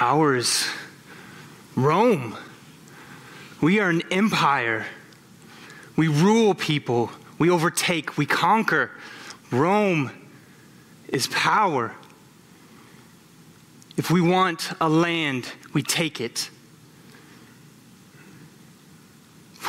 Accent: American